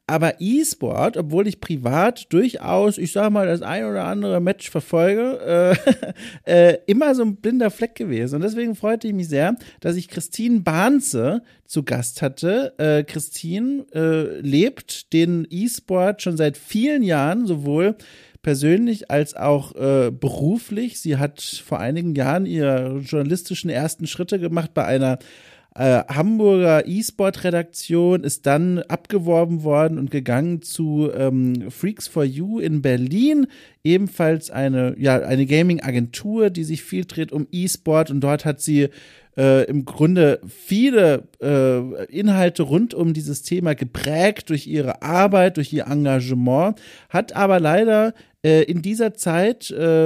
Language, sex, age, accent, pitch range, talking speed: German, male, 40-59, German, 145-195 Hz, 145 wpm